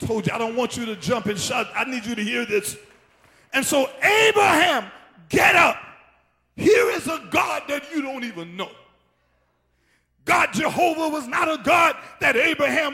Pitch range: 220-290 Hz